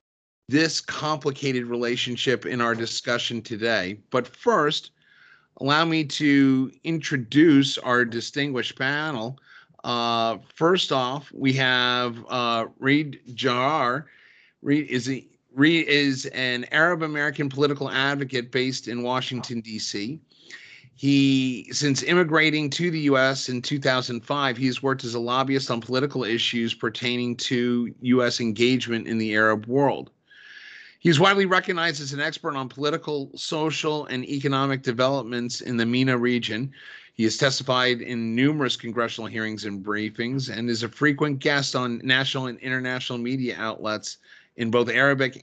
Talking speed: 130 wpm